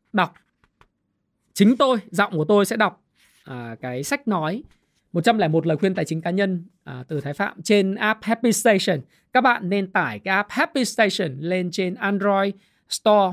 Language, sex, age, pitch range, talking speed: Vietnamese, male, 20-39, 170-230 Hz, 175 wpm